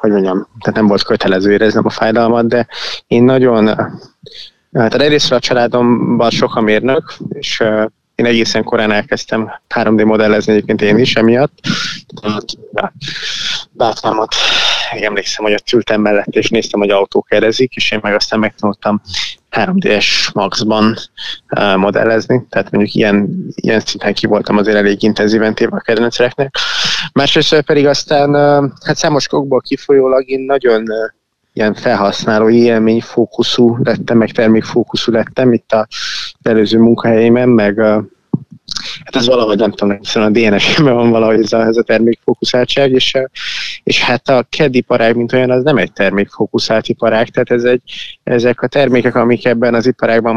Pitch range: 110-125 Hz